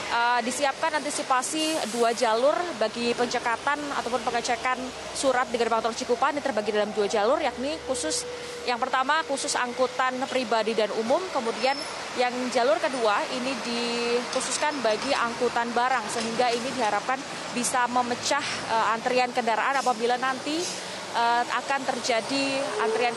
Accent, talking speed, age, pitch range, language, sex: native, 125 wpm, 20-39, 230-275 Hz, Indonesian, female